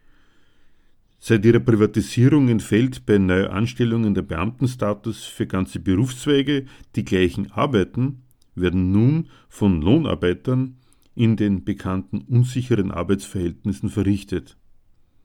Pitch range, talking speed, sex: 95-120 Hz, 95 wpm, male